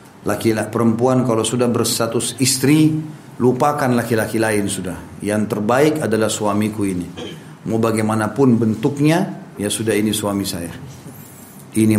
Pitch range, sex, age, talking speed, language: 105-135 Hz, male, 40-59, 120 wpm, Indonesian